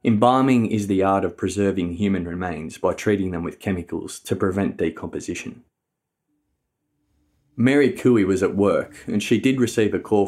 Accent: Australian